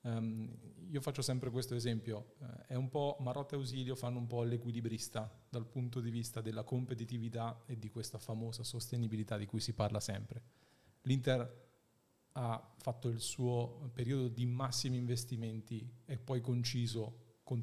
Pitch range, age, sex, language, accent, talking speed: 115-130 Hz, 40-59, male, Italian, native, 155 wpm